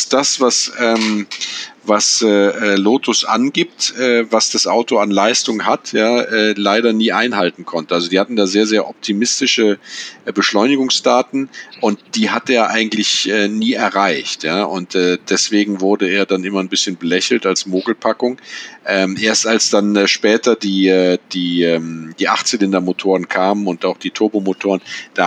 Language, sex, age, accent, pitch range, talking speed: German, male, 40-59, German, 90-105 Hz, 145 wpm